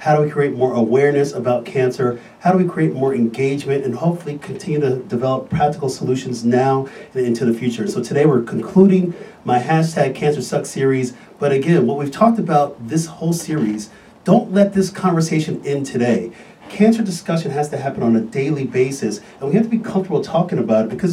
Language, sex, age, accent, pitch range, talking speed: English, male, 40-59, American, 120-160 Hz, 195 wpm